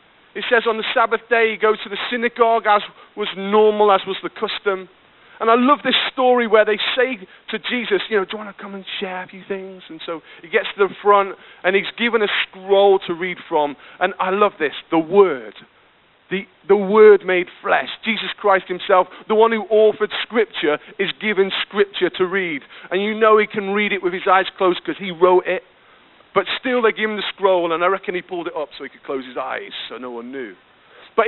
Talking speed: 230 wpm